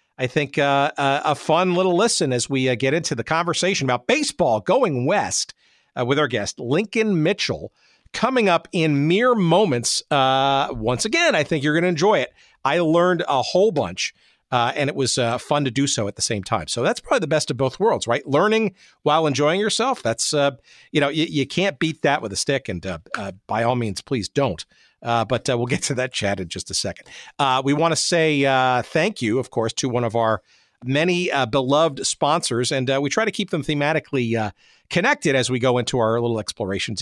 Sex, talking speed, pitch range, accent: male, 220 wpm, 125-180 Hz, American